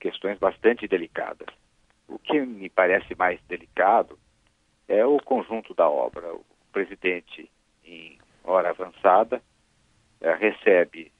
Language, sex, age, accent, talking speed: Portuguese, male, 50-69, Brazilian, 105 wpm